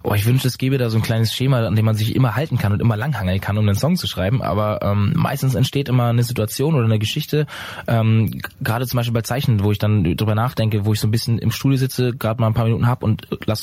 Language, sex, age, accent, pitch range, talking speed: German, male, 20-39, German, 105-125 Hz, 275 wpm